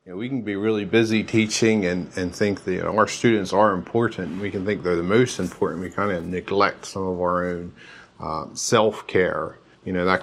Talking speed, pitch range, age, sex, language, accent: 200 wpm, 90-105 Hz, 40-59, male, English, American